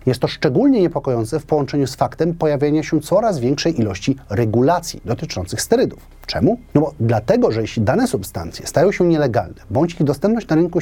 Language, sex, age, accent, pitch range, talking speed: Polish, male, 30-49, native, 125-170 Hz, 180 wpm